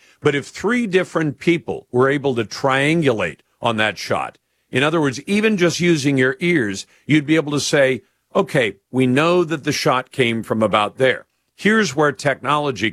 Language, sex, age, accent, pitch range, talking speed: English, male, 50-69, American, 125-165 Hz, 175 wpm